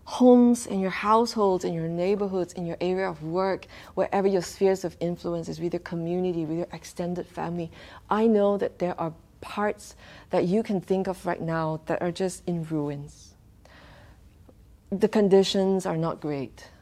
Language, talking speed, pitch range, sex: English, 170 wpm, 155-185 Hz, female